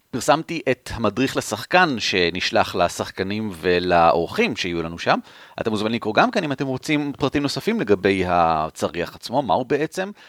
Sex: male